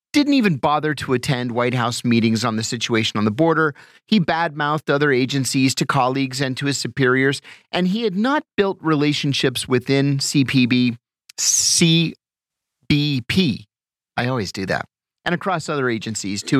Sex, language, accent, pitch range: male, English, American, 125-170 Hz